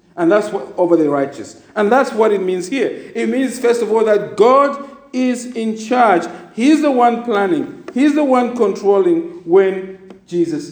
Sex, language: male, English